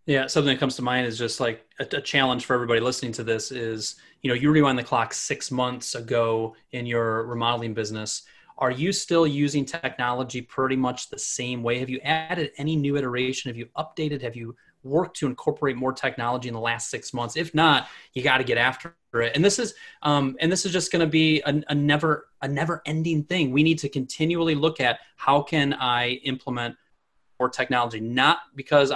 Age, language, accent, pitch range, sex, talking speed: 30-49, English, American, 120-150 Hz, male, 210 wpm